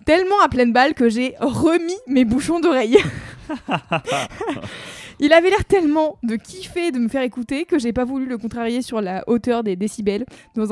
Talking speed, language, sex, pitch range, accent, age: 185 wpm, French, female, 220-290 Hz, French, 20-39